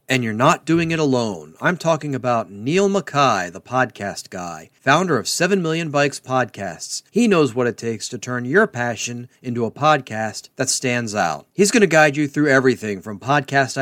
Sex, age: male, 40-59